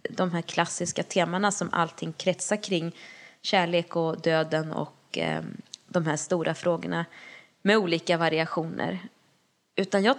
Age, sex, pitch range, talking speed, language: 20-39, female, 165-190 Hz, 130 wpm, Swedish